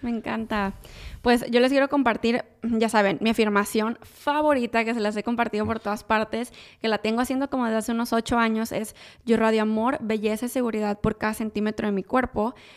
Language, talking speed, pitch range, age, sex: Spanish, 200 wpm, 215-250 Hz, 20-39, female